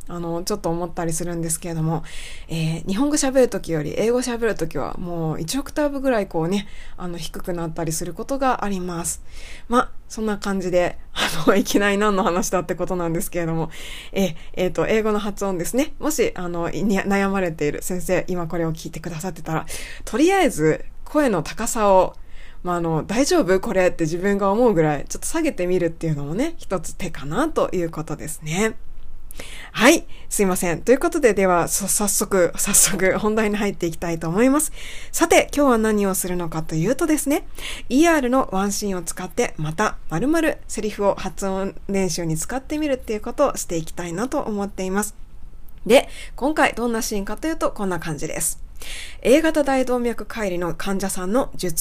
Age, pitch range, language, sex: 20-39, 170-240 Hz, Japanese, female